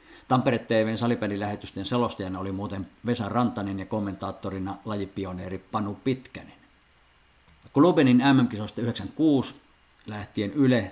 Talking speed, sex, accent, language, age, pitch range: 105 wpm, male, native, Finnish, 50-69, 95-115 Hz